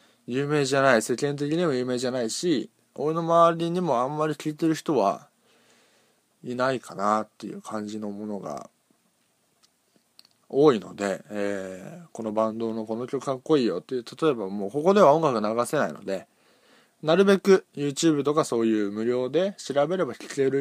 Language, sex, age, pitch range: Japanese, male, 20-39, 110-160 Hz